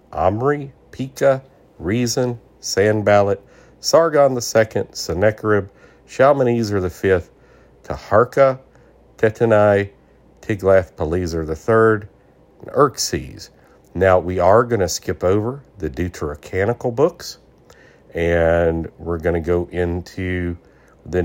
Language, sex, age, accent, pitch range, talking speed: English, male, 50-69, American, 80-110 Hz, 90 wpm